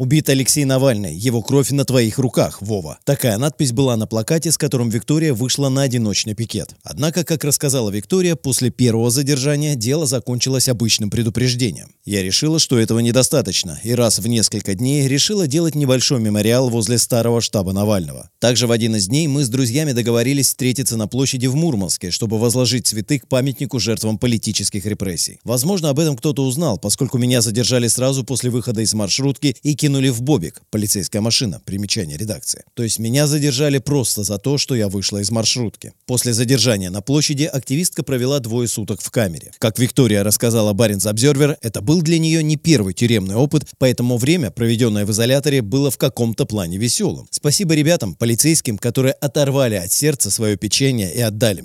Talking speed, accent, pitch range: 175 wpm, native, 110-140 Hz